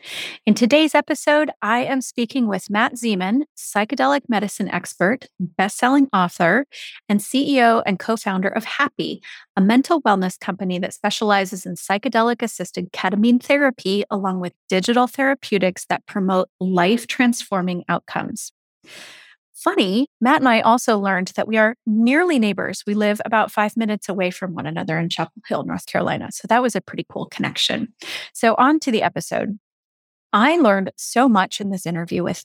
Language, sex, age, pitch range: English, female, 30-49, 190-245 Hz